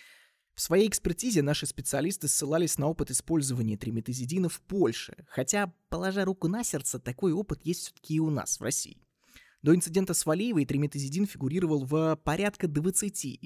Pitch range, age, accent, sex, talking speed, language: 125-170 Hz, 20-39, native, male, 155 wpm, Russian